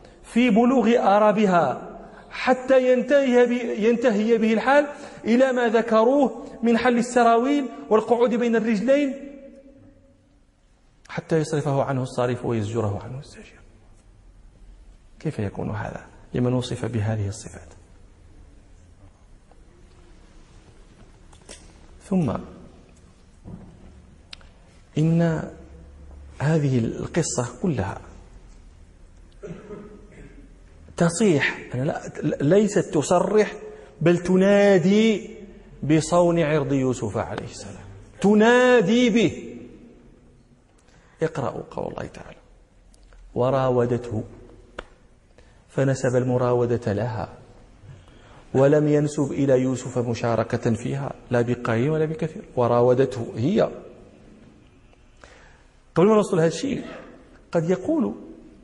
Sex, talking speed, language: male, 80 wpm, Danish